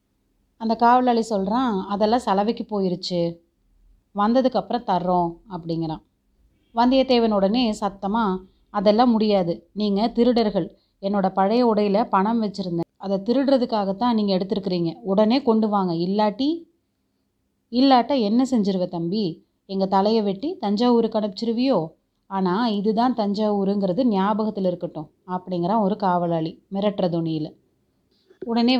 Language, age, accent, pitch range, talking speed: Tamil, 30-49, native, 185-230 Hz, 100 wpm